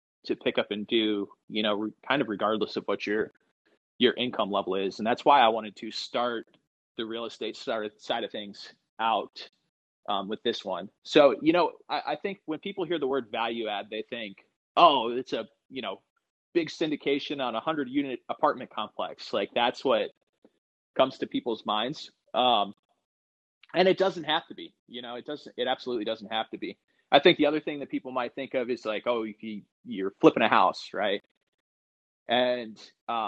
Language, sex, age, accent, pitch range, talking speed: English, male, 30-49, American, 110-150 Hz, 195 wpm